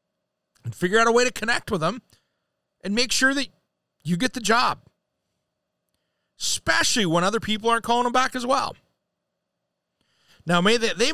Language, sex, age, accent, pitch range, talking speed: English, male, 40-59, American, 160-215 Hz, 165 wpm